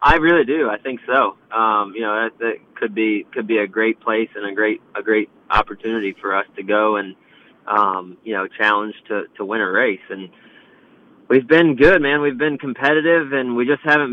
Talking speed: 210 wpm